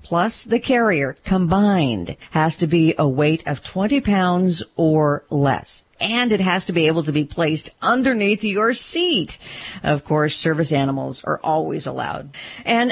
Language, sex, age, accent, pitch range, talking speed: English, female, 50-69, American, 155-230 Hz, 160 wpm